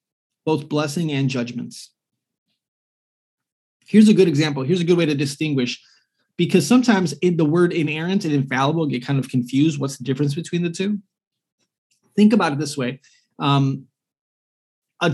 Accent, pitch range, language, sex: American, 135-175 Hz, English, male